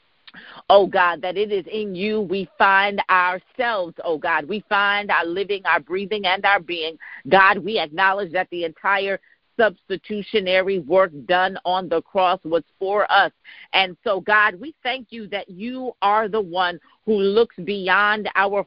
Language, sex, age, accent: English, female, 40-59, American